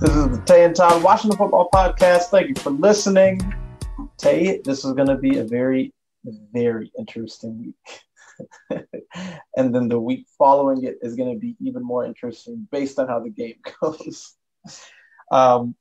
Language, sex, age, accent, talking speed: English, male, 30-49, American, 165 wpm